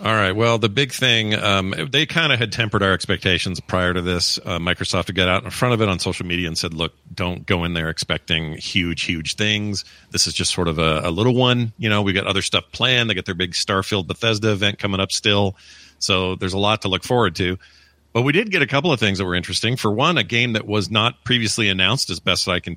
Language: English